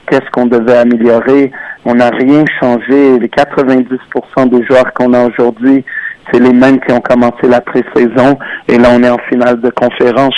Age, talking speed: 50-69, 180 wpm